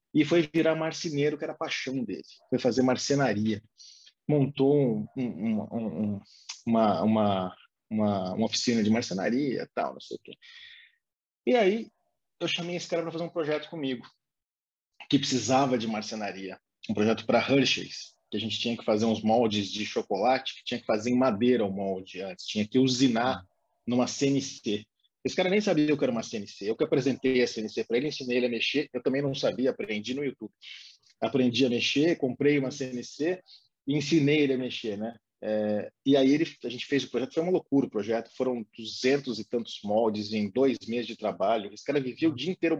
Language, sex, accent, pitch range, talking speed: Portuguese, male, Brazilian, 110-145 Hz, 200 wpm